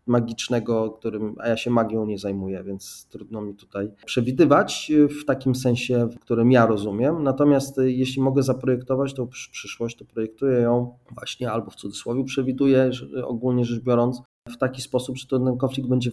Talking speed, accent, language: 165 wpm, native, Polish